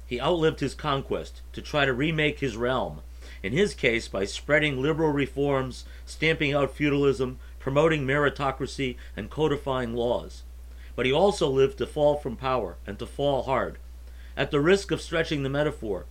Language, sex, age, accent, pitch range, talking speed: English, male, 50-69, American, 115-160 Hz, 165 wpm